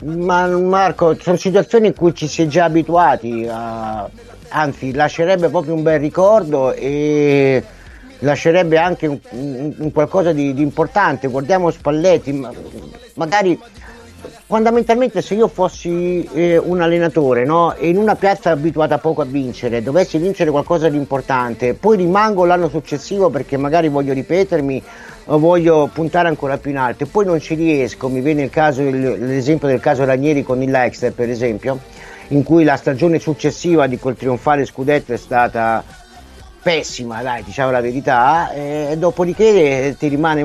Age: 50-69